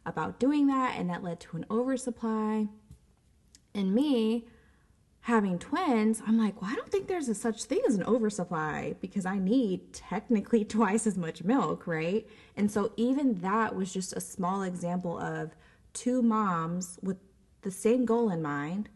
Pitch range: 175-215 Hz